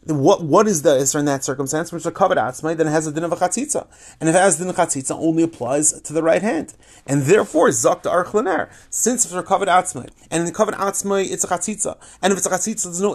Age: 30-49